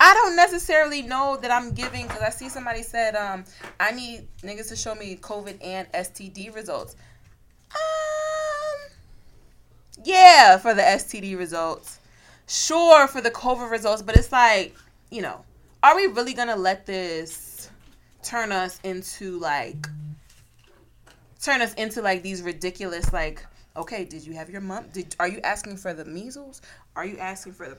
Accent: American